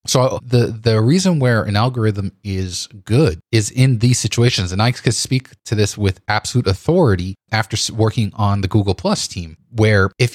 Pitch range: 100-125 Hz